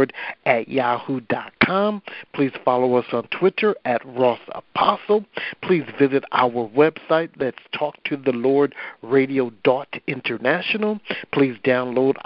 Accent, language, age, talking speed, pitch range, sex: American, English, 60-79, 115 wpm, 130-155 Hz, male